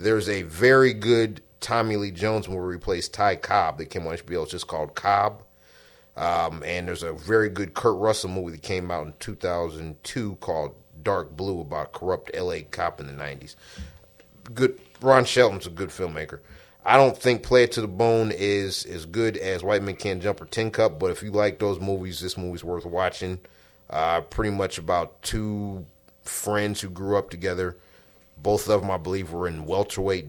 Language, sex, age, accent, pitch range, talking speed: English, male, 30-49, American, 80-110 Hz, 190 wpm